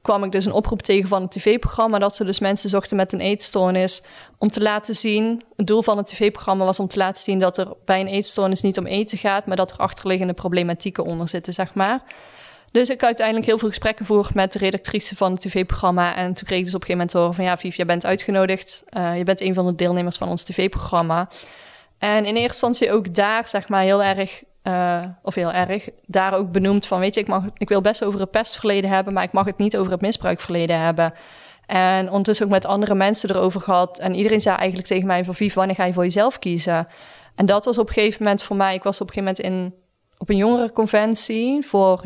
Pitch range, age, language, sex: 185-210 Hz, 20-39, Dutch, female